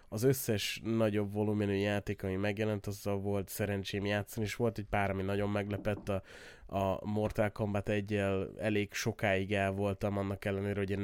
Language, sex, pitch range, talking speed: Hungarian, male, 100-120 Hz, 170 wpm